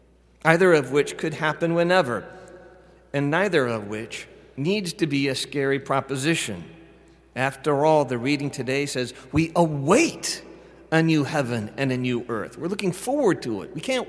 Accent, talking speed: American, 160 wpm